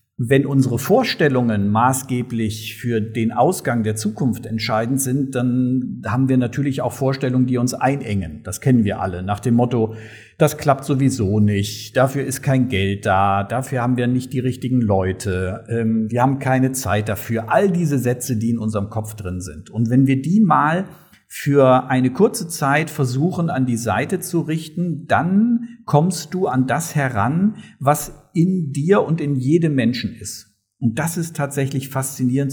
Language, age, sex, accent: German, 50-69, male, German